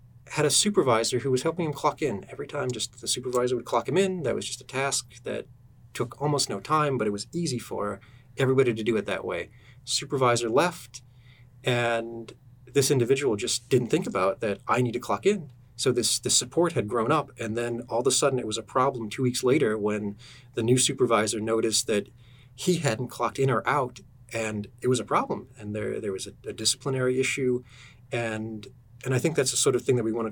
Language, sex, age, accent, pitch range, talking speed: English, male, 30-49, American, 115-130 Hz, 220 wpm